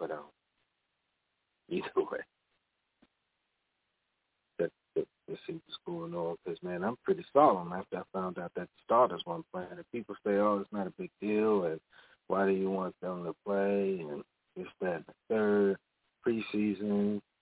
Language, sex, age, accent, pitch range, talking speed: English, male, 40-59, American, 95-160 Hz, 160 wpm